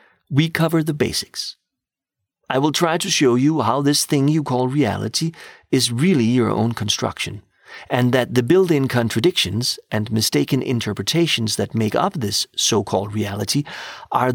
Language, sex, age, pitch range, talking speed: English, male, 40-59, 115-155 Hz, 150 wpm